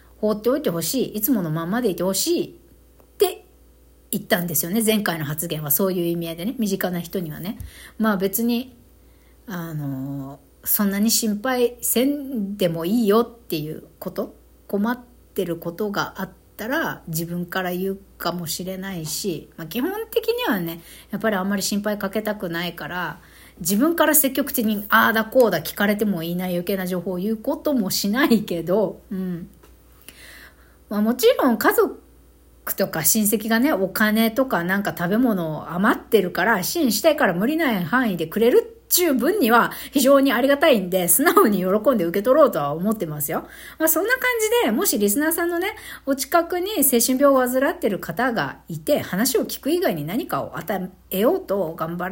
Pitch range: 180-265 Hz